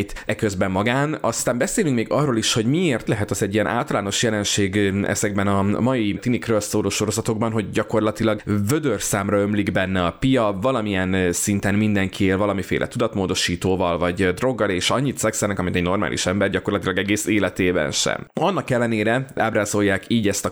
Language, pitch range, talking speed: Hungarian, 100-110 Hz, 160 wpm